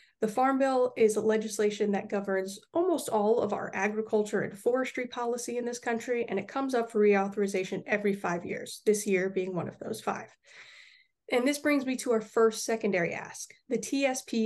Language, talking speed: English, 190 wpm